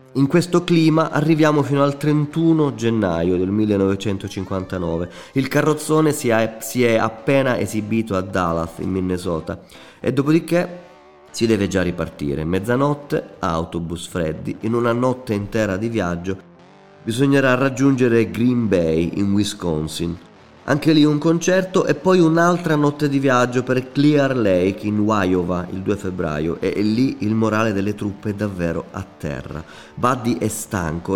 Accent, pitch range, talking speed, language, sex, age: native, 90-130 Hz, 140 wpm, Italian, male, 30-49